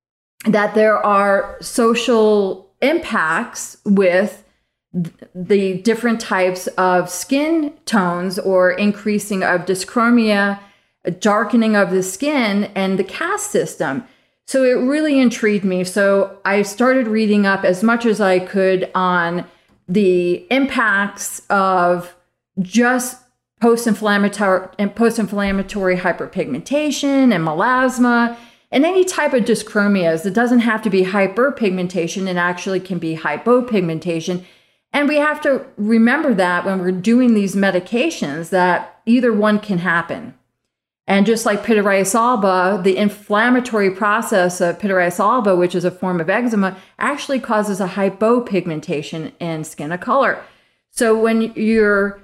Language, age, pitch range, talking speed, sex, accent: English, 30-49, 185-235 Hz, 125 wpm, female, American